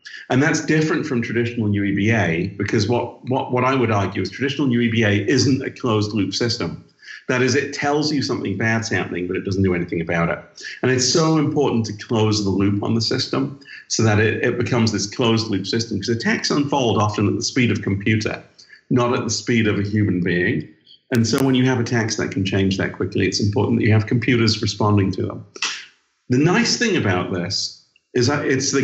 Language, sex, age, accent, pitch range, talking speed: English, male, 50-69, British, 100-130 Hz, 215 wpm